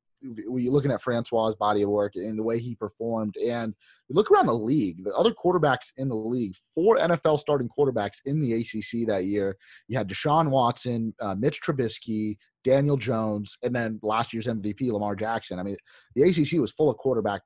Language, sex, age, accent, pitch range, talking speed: English, male, 30-49, American, 105-130 Hz, 195 wpm